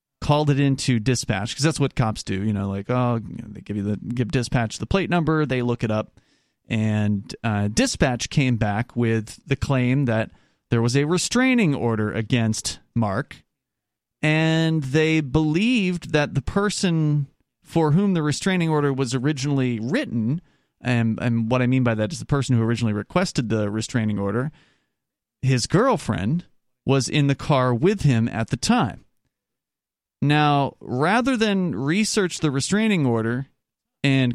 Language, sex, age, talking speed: English, male, 30-49, 160 wpm